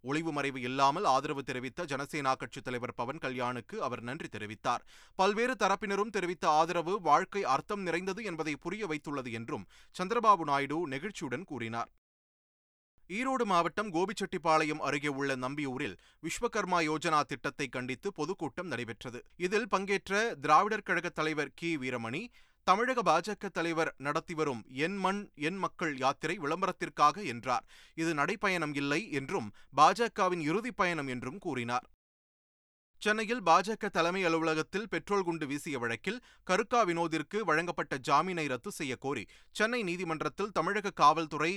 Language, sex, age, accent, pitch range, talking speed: Tamil, male, 30-49, native, 135-190 Hz, 125 wpm